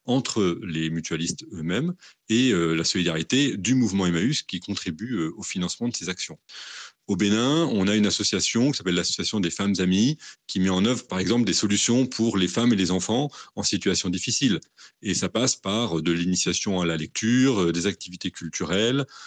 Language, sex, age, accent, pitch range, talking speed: French, male, 30-49, French, 95-130 Hz, 195 wpm